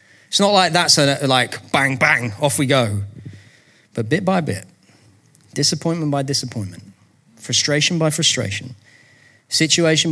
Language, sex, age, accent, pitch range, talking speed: English, male, 30-49, British, 110-145 Hz, 130 wpm